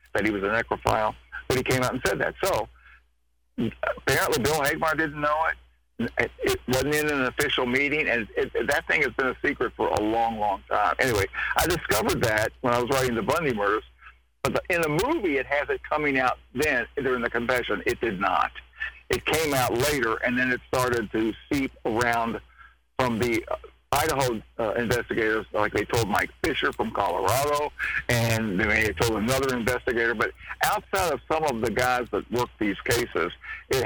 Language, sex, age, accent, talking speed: English, male, 60-79, American, 195 wpm